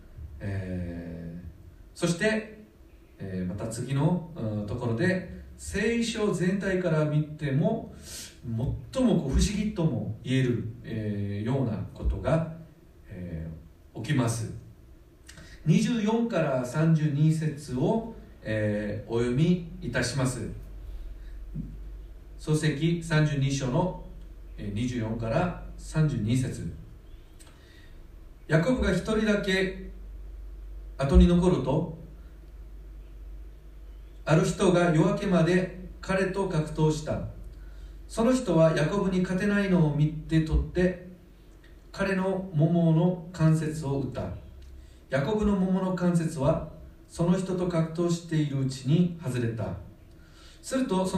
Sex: male